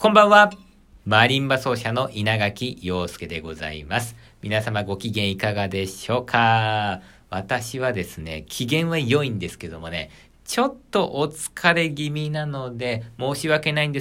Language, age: Japanese, 50-69